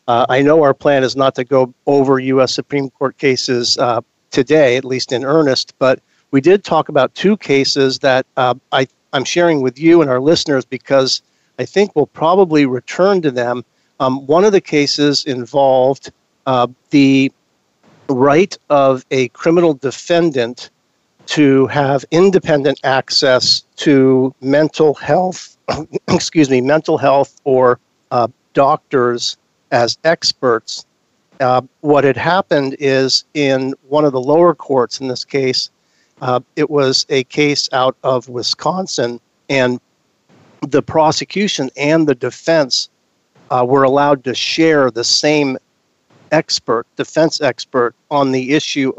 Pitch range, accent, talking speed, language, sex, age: 130-150 Hz, American, 140 wpm, English, male, 50-69